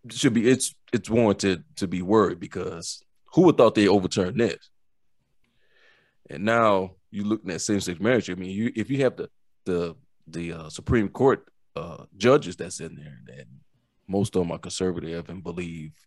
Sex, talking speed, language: male, 180 wpm, English